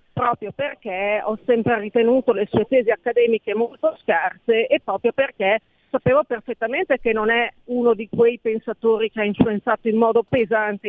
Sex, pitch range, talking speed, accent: female, 200-250 Hz, 160 wpm, native